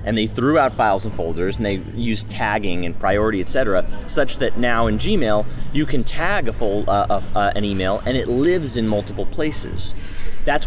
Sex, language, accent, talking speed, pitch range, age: male, English, American, 210 wpm, 105-125 Hz, 30-49